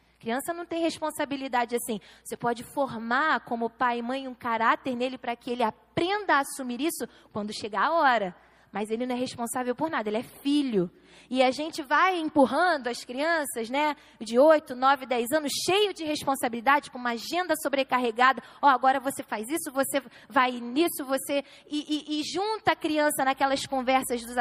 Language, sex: Portuguese, female